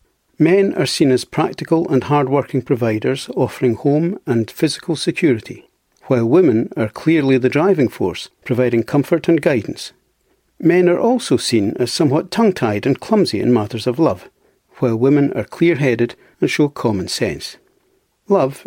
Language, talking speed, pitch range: English, 150 wpm, 125-160 Hz